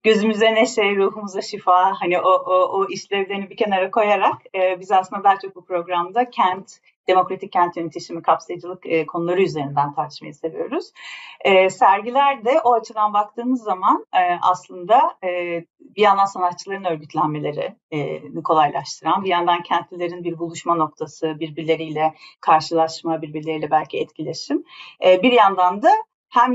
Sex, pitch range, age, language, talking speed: female, 165-205 Hz, 40-59, Turkish, 135 wpm